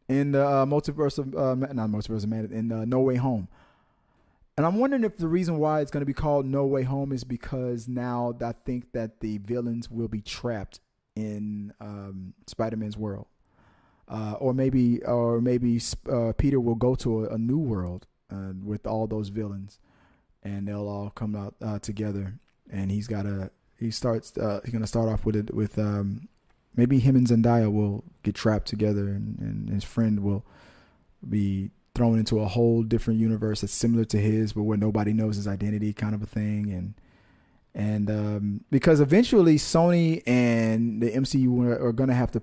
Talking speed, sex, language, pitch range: 190 wpm, male, English, 105-130 Hz